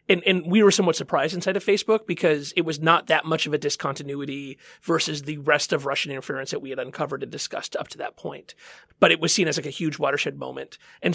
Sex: male